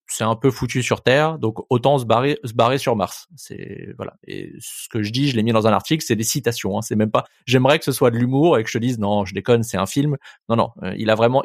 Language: French